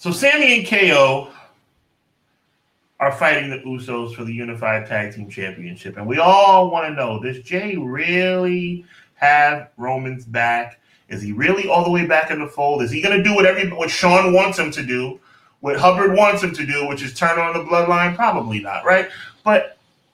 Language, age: English, 30-49